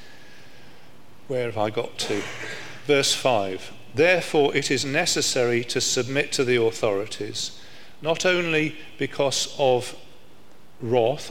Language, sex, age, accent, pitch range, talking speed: English, male, 40-59, British, 120-145 Hz, 110 wpm